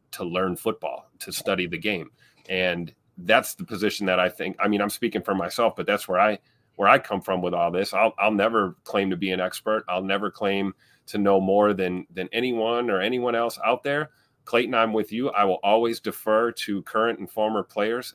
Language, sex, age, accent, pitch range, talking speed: English, male, 30-49, American, 100-120 Hz, 220 wpm